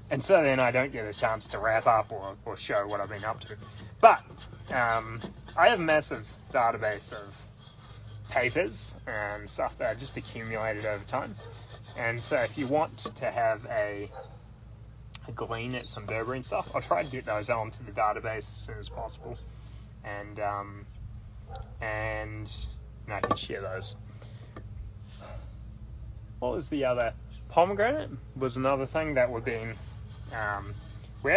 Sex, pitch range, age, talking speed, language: male, 105-130 Hz, 20-39, 155 wpm, English